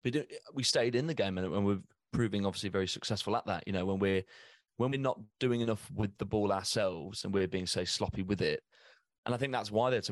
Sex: male